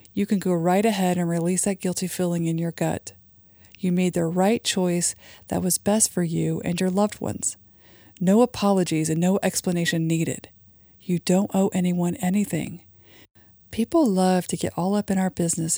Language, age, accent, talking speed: English, 40-59, American, 180 wpm